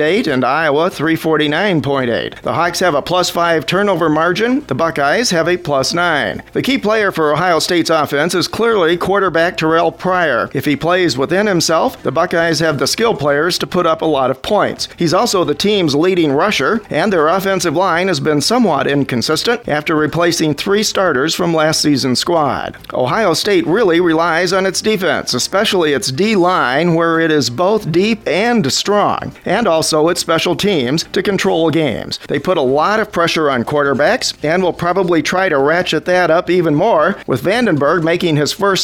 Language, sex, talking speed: English, male, 180 wpm